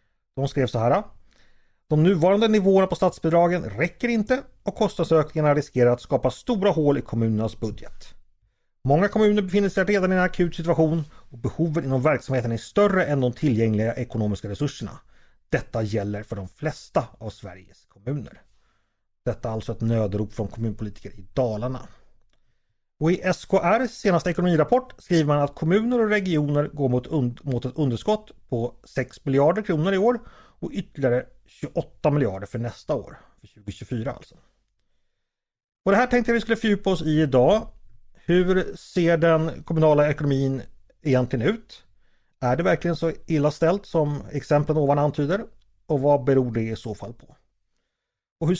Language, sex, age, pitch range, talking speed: Swedish, male, 30-49, 115-175 Hz, 155 wpm